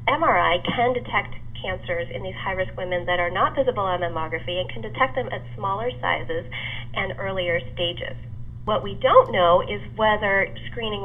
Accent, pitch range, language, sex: American, 120-195 Hz, English, female